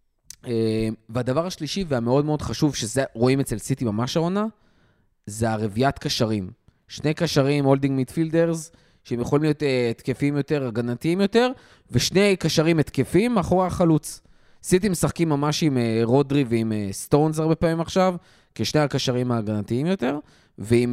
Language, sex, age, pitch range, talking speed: Hebrew, male, 20-39, 120-165 Hz, 140 wpm